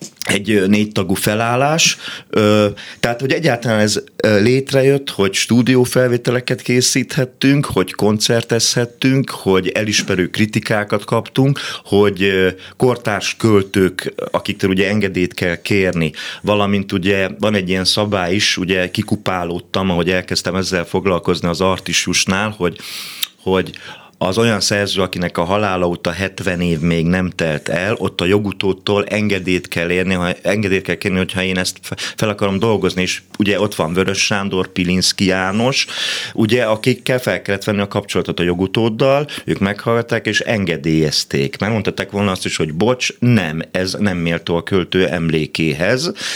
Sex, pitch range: male, 95-115 Hz